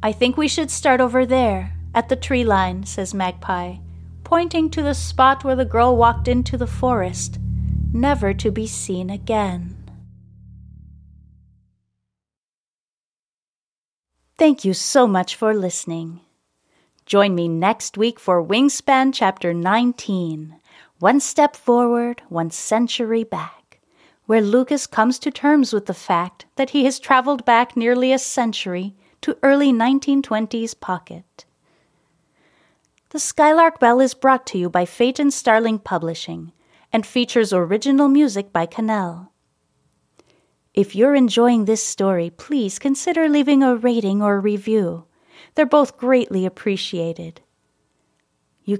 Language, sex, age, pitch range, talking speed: English, female, 30-49, 185-265 Hz, 125 wpm